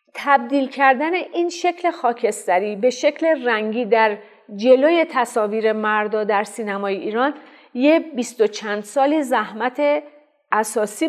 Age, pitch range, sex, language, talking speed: 40-59, 205-270 Hz, female, Persian, 120 wpm